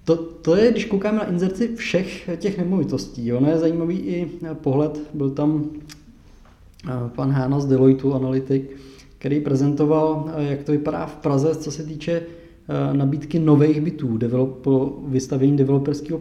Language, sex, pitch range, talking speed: Czech, male, 125-155 Hz, 145 wpm